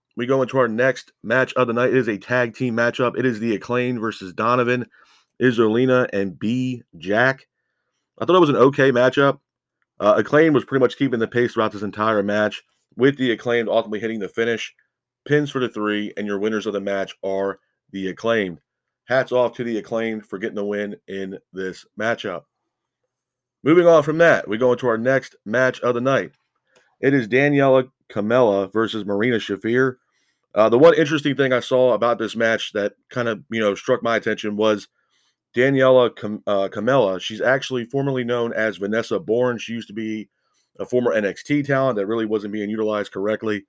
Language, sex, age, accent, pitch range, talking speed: English, male, 30-49, American, 105-130 Hz, 190 wpm